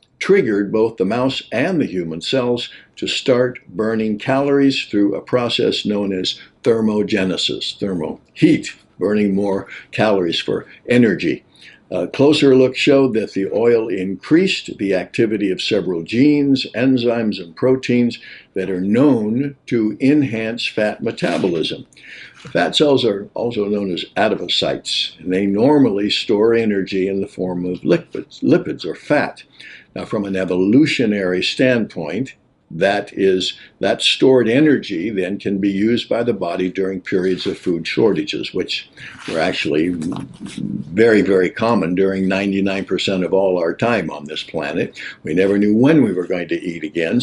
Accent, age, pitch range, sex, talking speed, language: American, 60-79, 95-130 Hz, male, 145 wpm, English